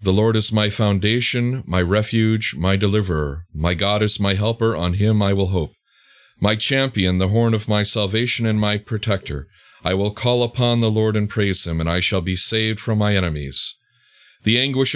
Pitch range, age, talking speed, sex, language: 95-120 Hz, 40-59, 195 wpm, male, English